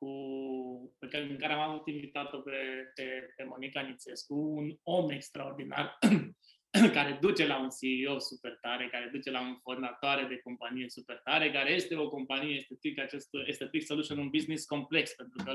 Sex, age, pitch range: male, 20-39, 135-155 Hz